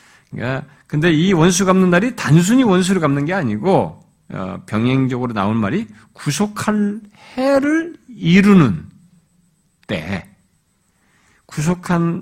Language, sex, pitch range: Korean, male, 125-185 Hz